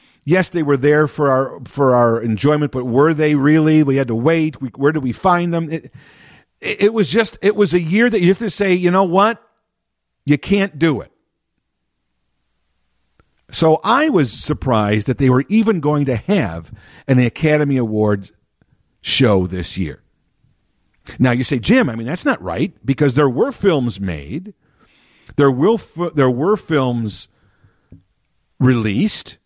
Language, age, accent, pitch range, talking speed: English, 50-69, American, 125-180 Hz, 165 wpm